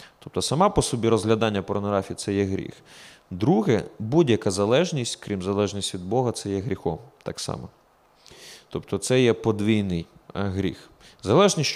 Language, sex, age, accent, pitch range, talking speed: Ukrainian, male, 30-49, native, 105-135 Hz, 145 wpm